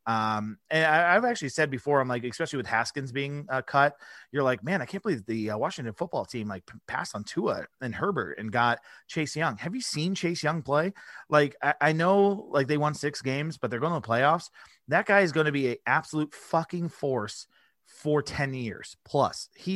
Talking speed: 215 wpm